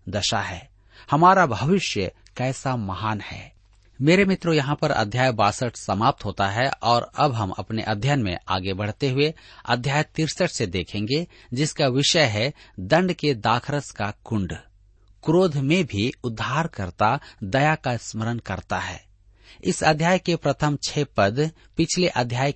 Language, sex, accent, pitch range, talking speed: Hindi, male, native, 105-150 Hz, 145 wpm